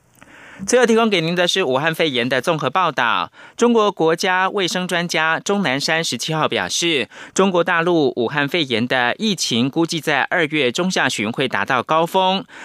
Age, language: 30-49, German